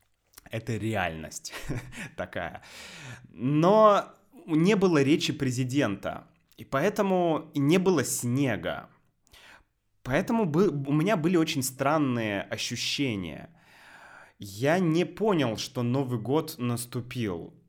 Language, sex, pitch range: Russian, male, 110-155 Hz